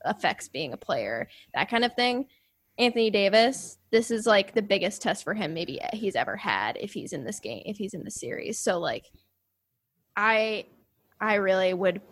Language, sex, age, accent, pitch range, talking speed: English, female, 10-29, American, 185-235 Hz, 190 wpm